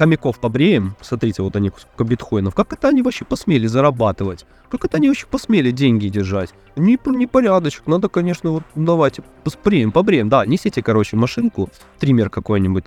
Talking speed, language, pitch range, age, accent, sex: 150 wpm, Russian, 110-150 Hz, 20-39, native, male